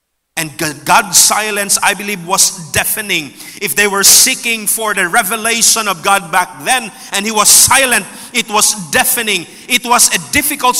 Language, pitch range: English, 185-235 Hz